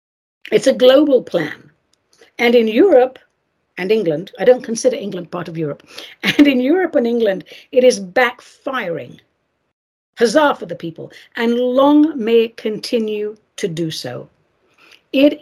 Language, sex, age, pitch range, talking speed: English, female, 60-79, 165-250 Hz, 145 wpm